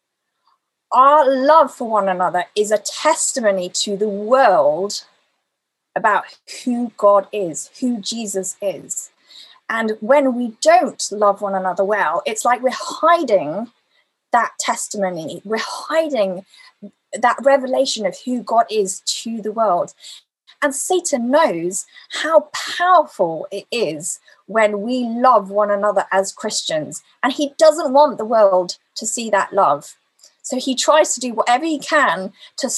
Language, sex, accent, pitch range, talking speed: English, female, British, 195-280 Hz, 140 wpm